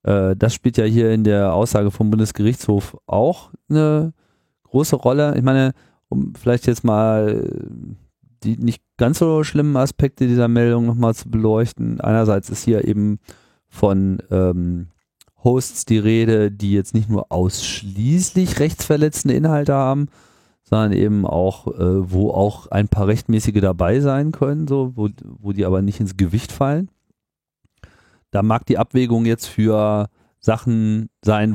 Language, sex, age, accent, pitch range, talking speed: German, male, 40-59, German, 100-125 Hz, 145 wpm